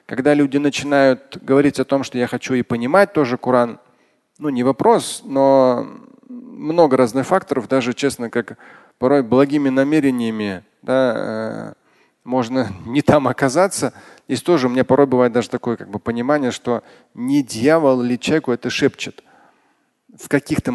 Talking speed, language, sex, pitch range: 150 wpm, Russian, male, 125-155 Hz